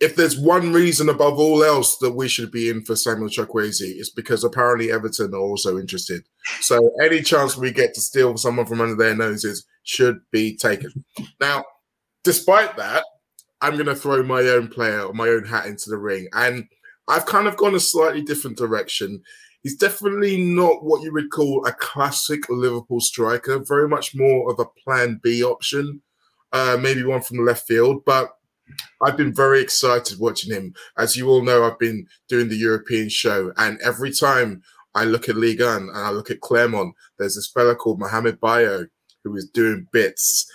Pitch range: 115-150 Hz